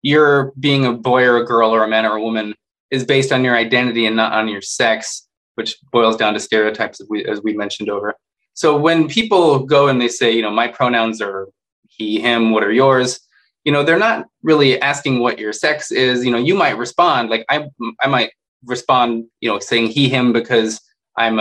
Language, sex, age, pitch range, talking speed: English, male, 20-39, 115-135 Hz, 220 wpm